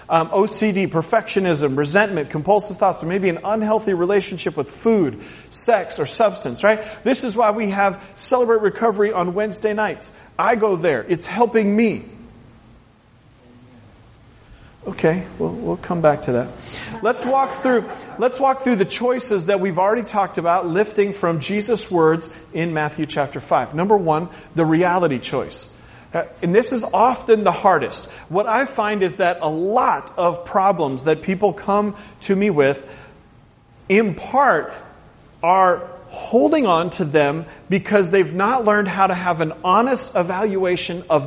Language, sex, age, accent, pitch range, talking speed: English, male, 40-59, American, 150-215 Hz, 155 wpm